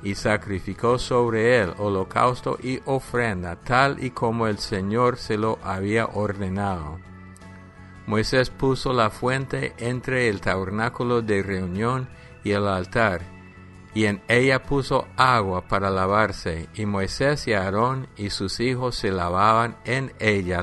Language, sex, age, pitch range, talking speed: English, male, 50-69, 95-120 Hz, 135 wpm